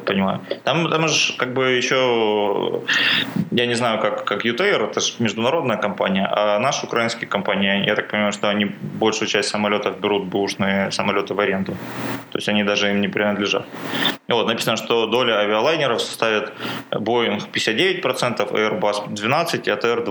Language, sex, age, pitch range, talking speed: Russian, male, 20-39, 105-120 Hz, 160 wpm